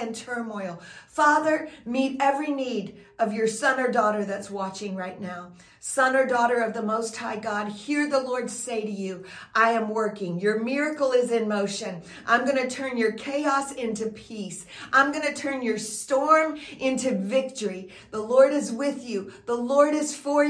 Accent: American